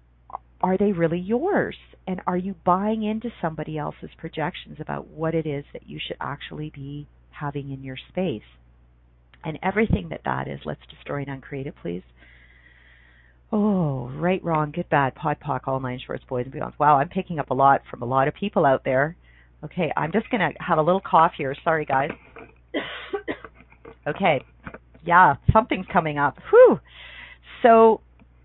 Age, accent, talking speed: 40-59, American, 170 wpm